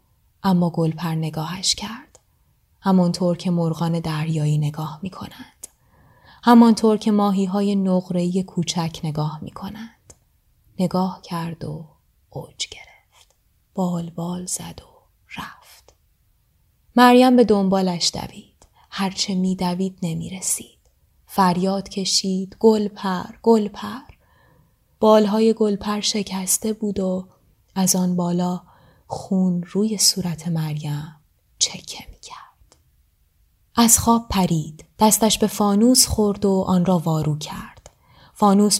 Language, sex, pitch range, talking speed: Persian, female, 165-205 Hz, 105 wpm